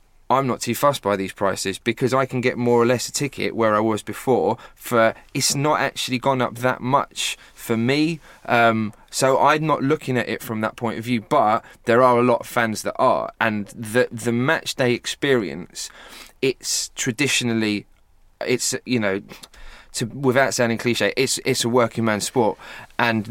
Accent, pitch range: British, 105-130 Hz